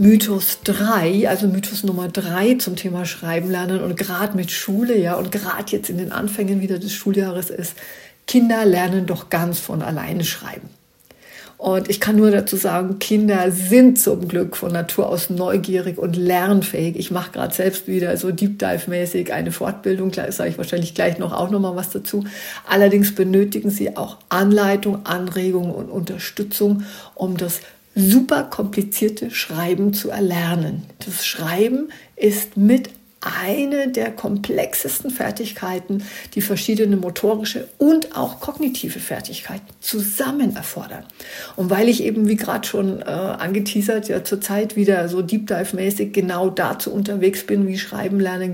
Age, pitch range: 50-69, 185-215 Hz